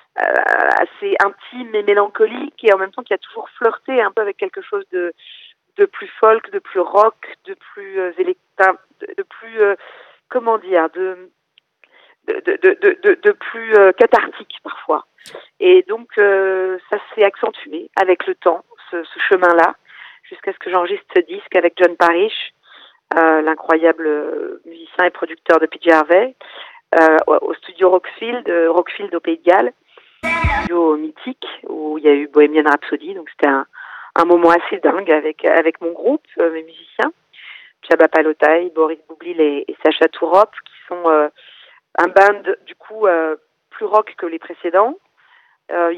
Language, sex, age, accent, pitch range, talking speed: French, female, 40-59, French, 165-260 Hz, 155 wpm